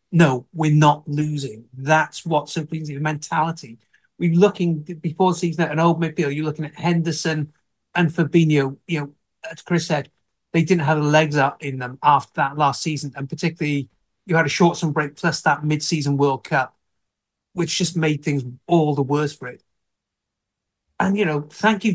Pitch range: 150-180 Hz